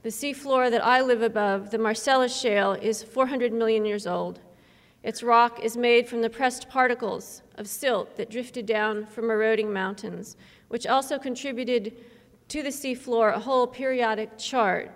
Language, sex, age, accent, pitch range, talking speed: English, female, 40-59, American, 215-250 Hz, 160 wpm